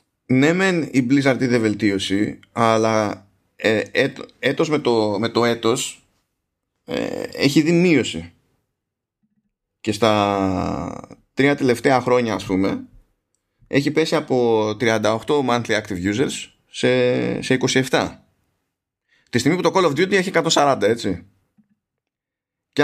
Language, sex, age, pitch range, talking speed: Greek, male, 20-39, 105-145 Hz, 125 wpm